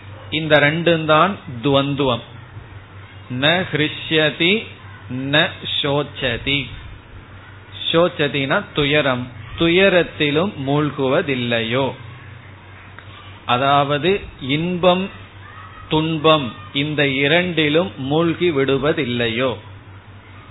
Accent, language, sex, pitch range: native, Tamil, male, 115-160 Hz